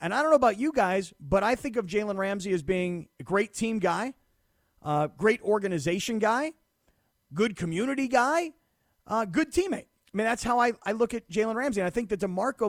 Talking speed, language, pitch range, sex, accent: 210 wpm, English, 180-240 Hz, male, American